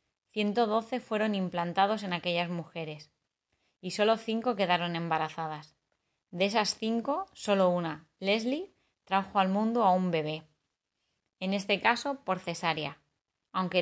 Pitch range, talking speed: 165-205 Hz, 125 wpm